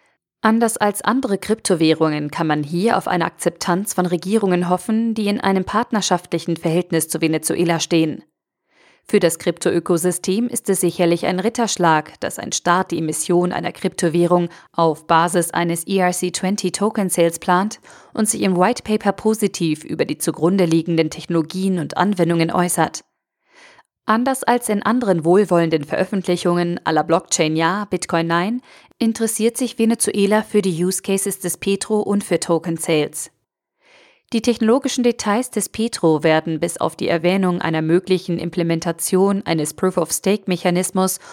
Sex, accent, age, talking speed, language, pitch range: female, German, 40-59, 140 wpm, German, 170-210 Hz